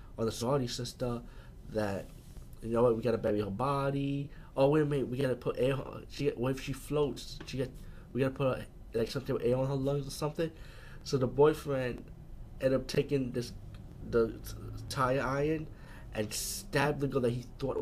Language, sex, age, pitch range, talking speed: English, male, 20-39, 110-135 Hz, 200 wpm